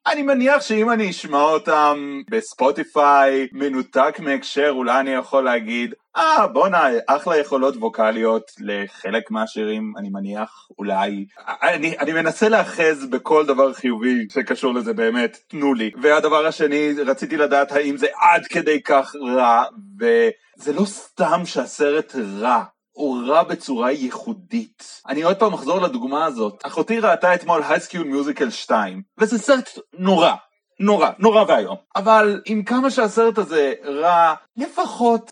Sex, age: male, 30-49